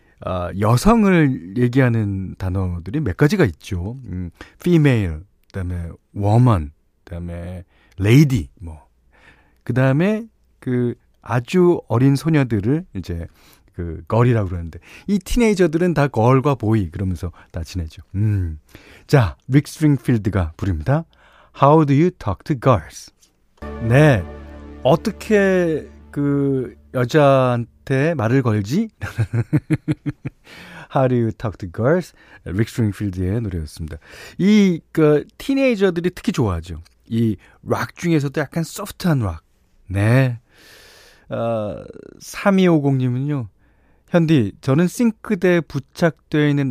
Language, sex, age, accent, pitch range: Korean, male, 40-59, native, 95-155 Hz